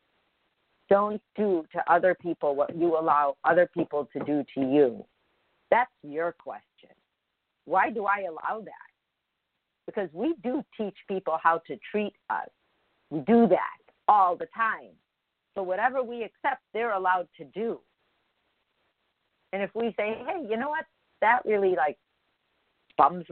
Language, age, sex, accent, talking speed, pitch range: English, 50-69, female, American, 145 wpm, 160-230 Hz